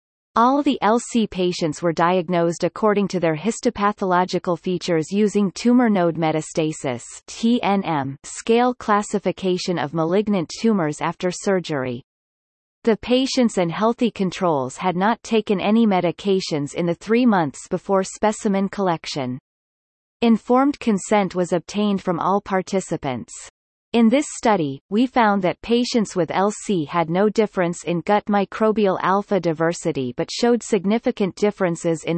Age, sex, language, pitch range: 30-49, female, English, 170-215 Hz